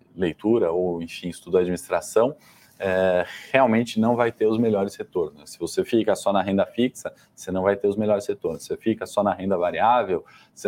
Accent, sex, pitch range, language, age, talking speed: Brazilian, male, 95-110 Hz, Portuguese, 20-39, 200 wpm